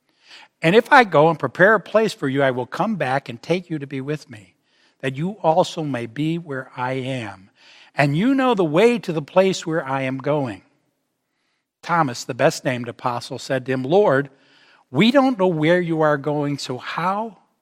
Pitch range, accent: 130-185 Hz, American